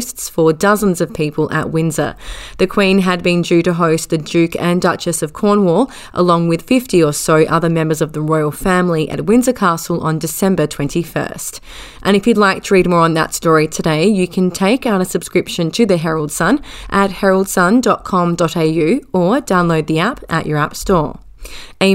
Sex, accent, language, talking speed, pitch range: female, Australian, English, 185 wpm, 160-195 Hz